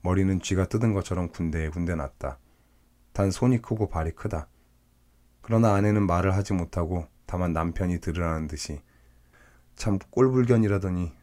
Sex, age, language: male, 20-39, Korean